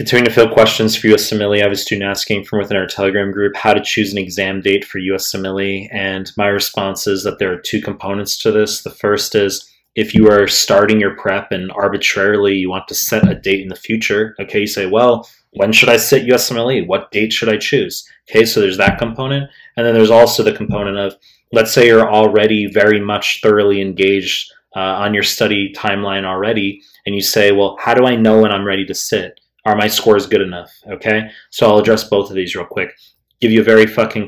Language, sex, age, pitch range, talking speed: English, male, 20-39, 100-110 Hz, 220 wpm